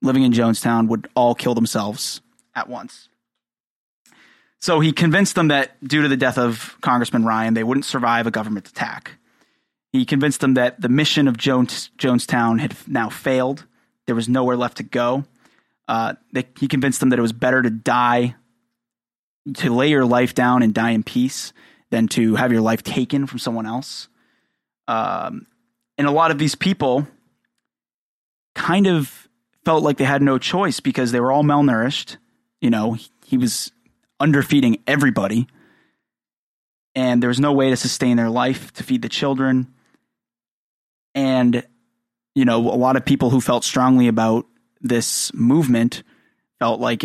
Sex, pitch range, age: male, 120-140 Hz, 20-39